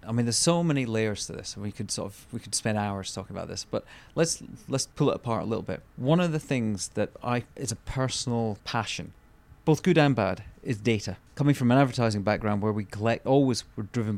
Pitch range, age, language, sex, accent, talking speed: 105-125 Hz, 30-49, English, male, British, 235 wpm